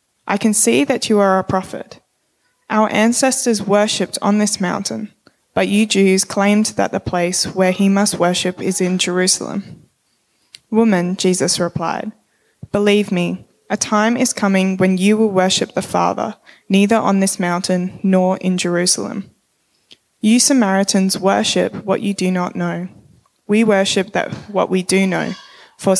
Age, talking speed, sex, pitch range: 10-29, 150 wpm, female, 185-210 Hz